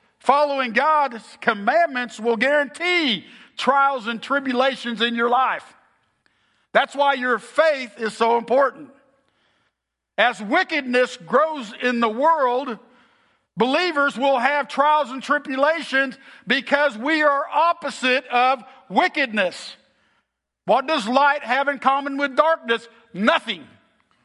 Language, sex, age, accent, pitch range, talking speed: English, male, 50-69, American, 235-290 Hz, 110 wpm